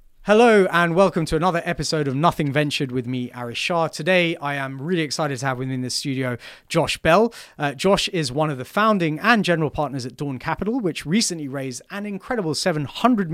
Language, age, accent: English, 30-49, British